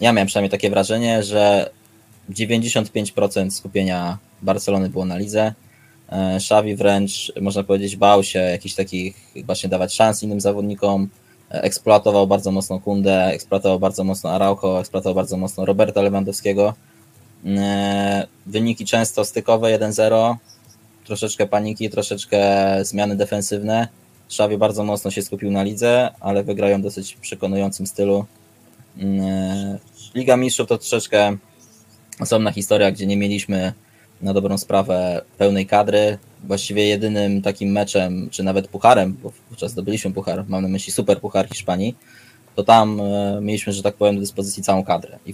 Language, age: Polish, 20-39